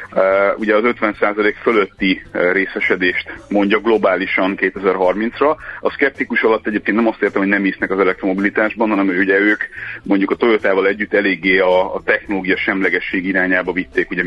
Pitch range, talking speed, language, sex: 95-115 Hz, 145 wpm, Hungarian, male